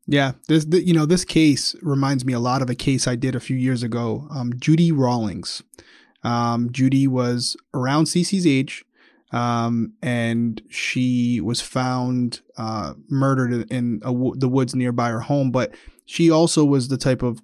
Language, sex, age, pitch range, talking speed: English, male, 20-39, 125-145 Hz, 165 wpm